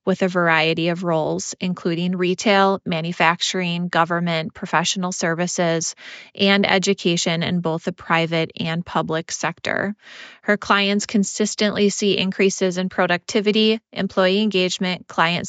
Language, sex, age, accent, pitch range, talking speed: English, female, 20-39, American, 175-200 Hz, 115 wpm